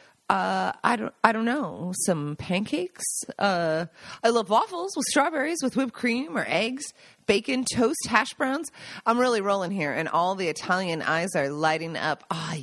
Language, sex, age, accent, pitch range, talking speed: English, female, 30-49, American, 180-245 Hz, 170 wpm